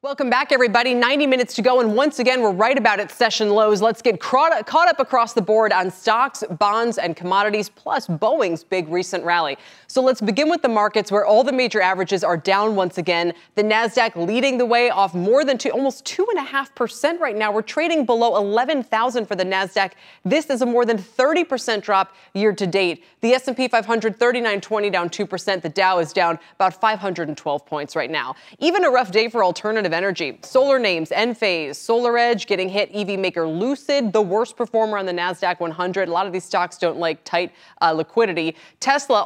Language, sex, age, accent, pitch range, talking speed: English, female, 20-39, American, 180-250 Hz, 190 wpm